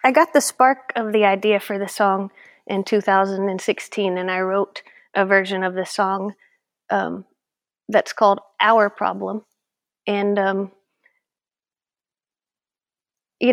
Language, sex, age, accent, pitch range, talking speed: English, female, 30-49, American, 195-225 Hz, 125 wpm